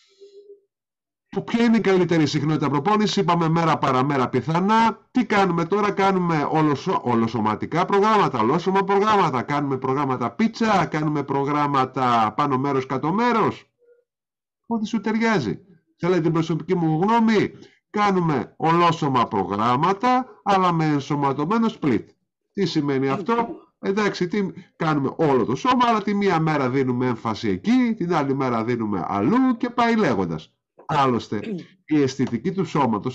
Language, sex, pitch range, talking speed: Greek, male, 130-200 Hz, 130 wpm